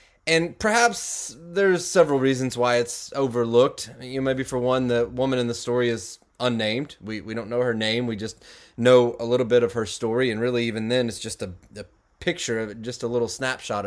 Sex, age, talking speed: male, 30-49, 225 wpm